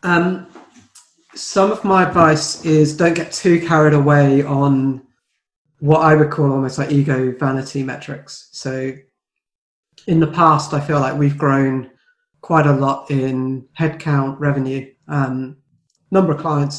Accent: British